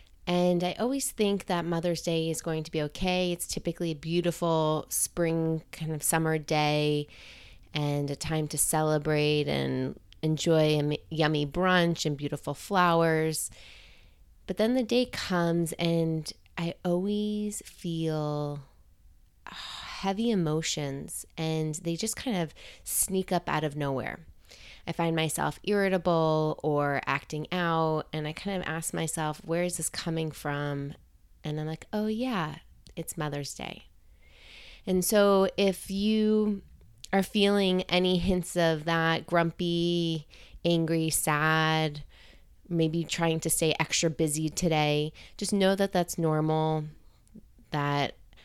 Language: English